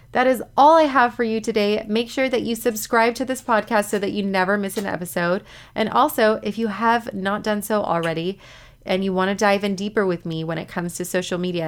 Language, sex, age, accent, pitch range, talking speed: English, female, 30-49, American, 175-220 Hz, 240 wpm